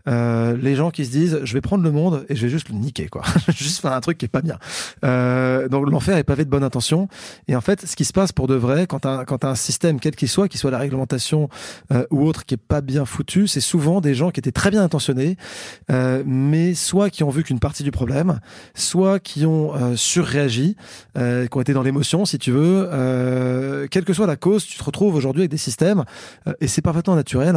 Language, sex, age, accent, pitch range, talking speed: French, male, 30-49, French, 125-165 Hz, 250 wpm